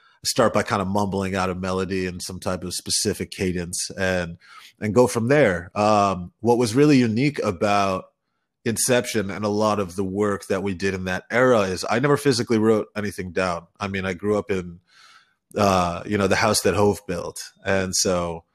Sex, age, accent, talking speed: male, 30-49, American, 195 wpm